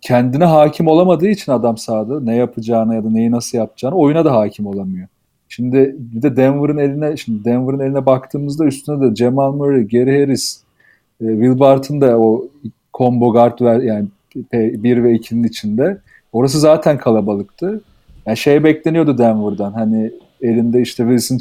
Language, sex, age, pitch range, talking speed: Turkish, male, 40-59, 115-145 Hz, 155 wpm